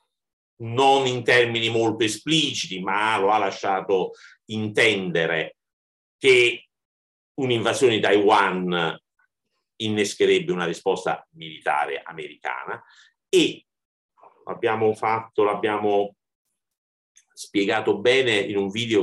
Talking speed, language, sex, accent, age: 90 wpm, Italian, male, native, 50-69